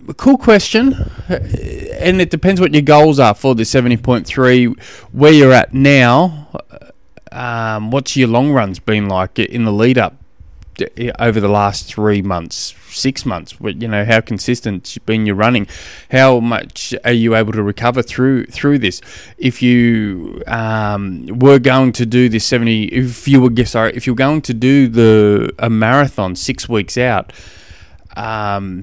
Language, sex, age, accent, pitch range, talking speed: English, male, 20-39, Australian, 105-130 Hz, 165 wpm